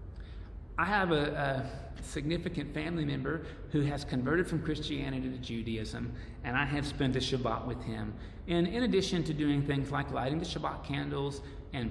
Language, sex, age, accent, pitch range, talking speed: English, male, 40-59, American, 115-155 Hz, 170 wpm